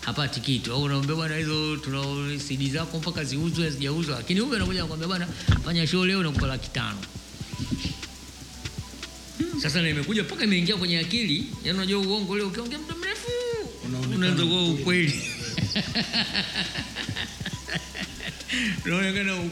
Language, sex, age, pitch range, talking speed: Swahili, male, 50-69, 145-200 Hz, 35 wpm